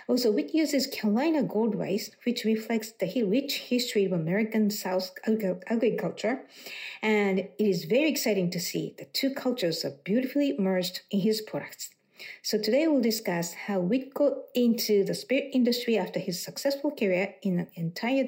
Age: 50-69